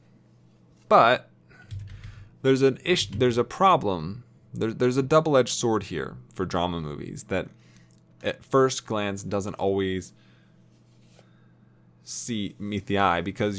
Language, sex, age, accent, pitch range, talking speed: English, male, 20-39, American, 80-120 Hz, 120 wpm